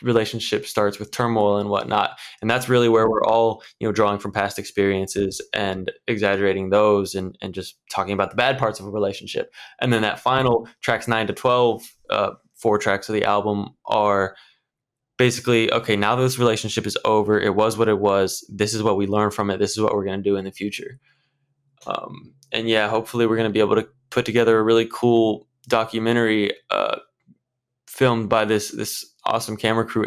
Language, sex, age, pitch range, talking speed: English, male, 20-39, 105-120 Hz, 200 wpm